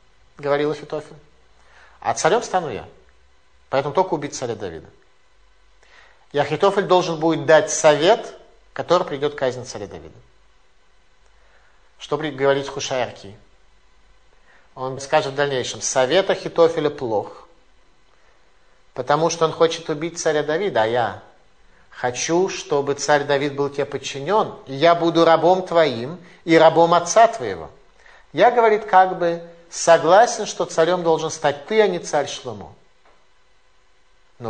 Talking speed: 125 wpm